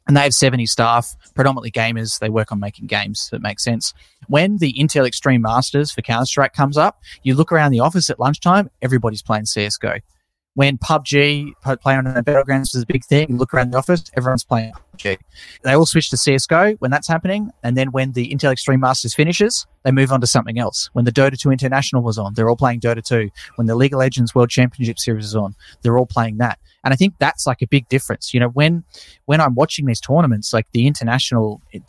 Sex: male